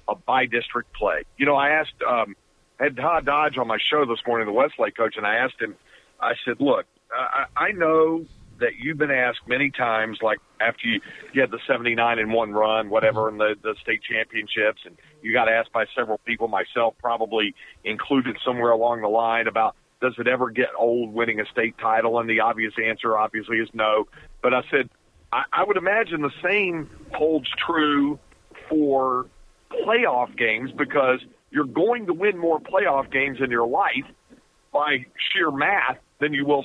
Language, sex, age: English, male, 50-69